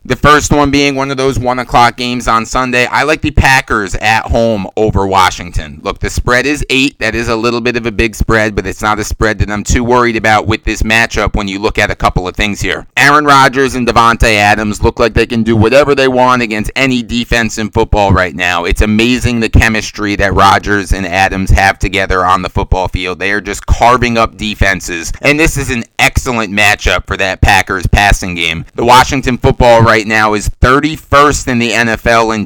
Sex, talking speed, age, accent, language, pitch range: male, 220 wpm, 30-49, American, English, 100-120 Hz